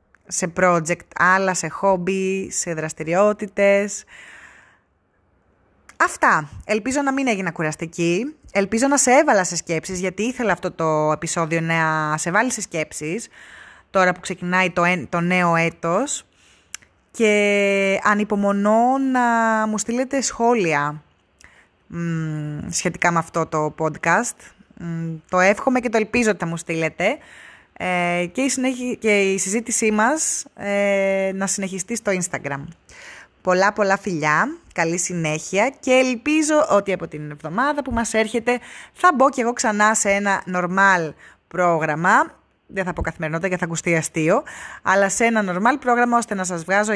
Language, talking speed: Greek, 135 wpm